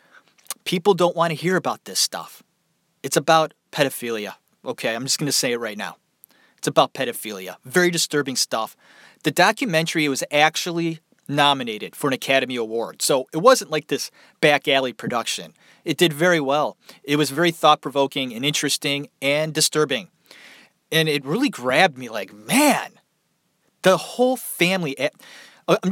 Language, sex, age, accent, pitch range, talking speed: English, male, 30-49, American, 135-180 Hz, 155 wpm